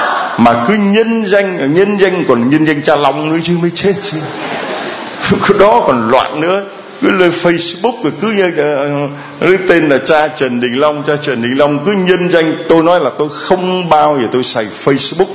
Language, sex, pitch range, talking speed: Vietnamese, male, 125-170 Hz, 190 wpm